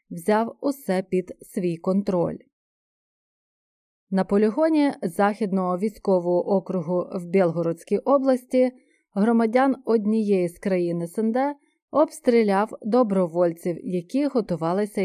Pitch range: 185-255 Hz